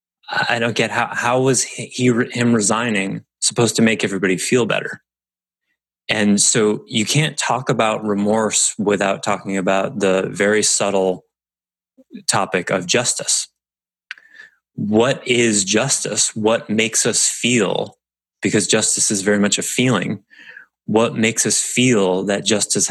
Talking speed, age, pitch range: 130 wpm, 20-39, 95-115 Hz